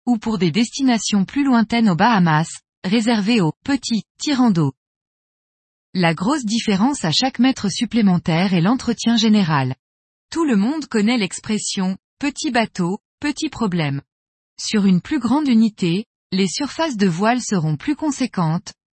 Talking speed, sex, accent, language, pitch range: 135 wpm, female, French, French, 180-250 Hz